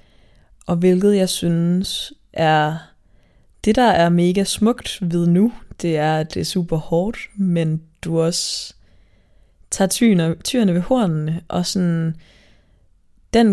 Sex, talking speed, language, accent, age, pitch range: female, 125 wpm, Danish, native, 20-39, 160-190 Hz